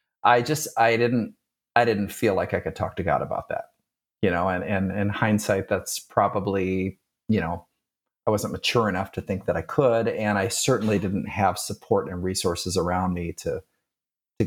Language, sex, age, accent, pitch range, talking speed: English, male, 40-59, American, 95-110 Hz, 195 wpm